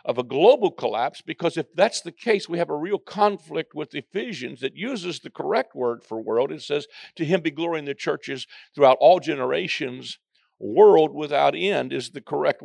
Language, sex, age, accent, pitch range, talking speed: English, male, 50-69, American, 140-195 Hz, 195 wpm